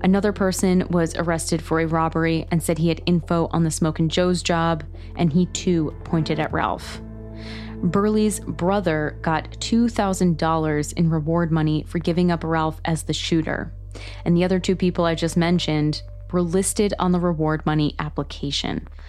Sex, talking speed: female, 165 wpm